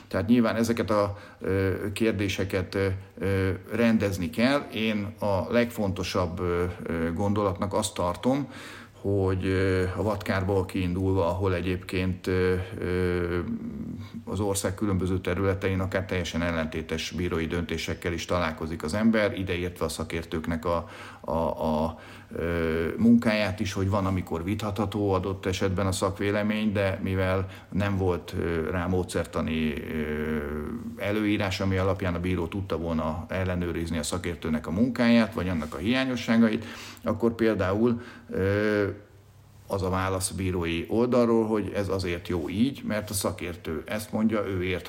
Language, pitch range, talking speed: Hungarian, 90-110 Hz, 120 wpm